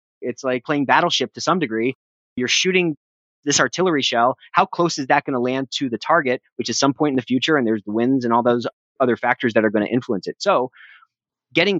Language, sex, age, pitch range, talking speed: English, male, 30-49, 115-140 Hz, 235 wpm